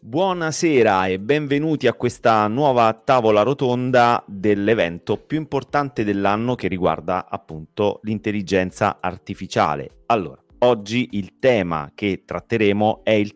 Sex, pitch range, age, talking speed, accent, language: male, 85-110 Hz, 30-49, 110 wpm, native, Italian